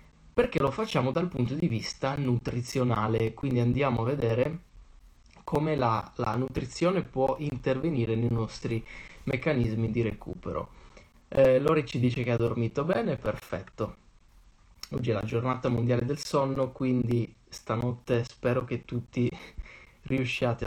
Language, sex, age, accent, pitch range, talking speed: Italian, male, 20-39, native, 110-135 Hz, 130 wpm